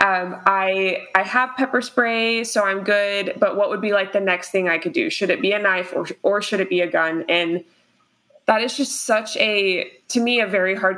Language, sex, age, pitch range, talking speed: English, female, 20-39, 175-210 Hz, 235 wpm